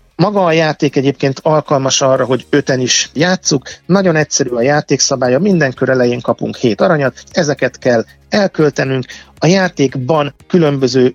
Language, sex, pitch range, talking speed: Hungarian, male, 125-150 Hz, 140 wpm